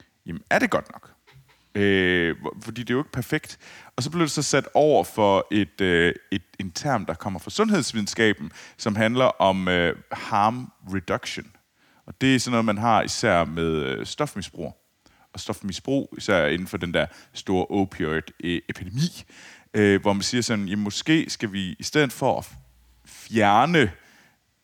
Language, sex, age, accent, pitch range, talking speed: Danish, male, 30-49, native, 90-120 Hz, 155 wpm